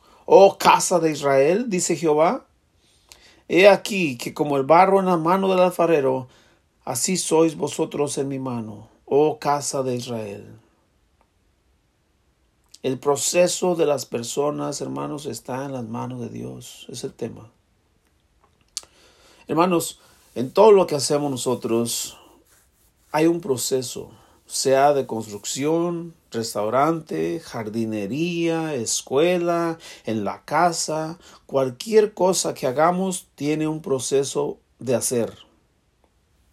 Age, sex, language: 40-59, male, Spanish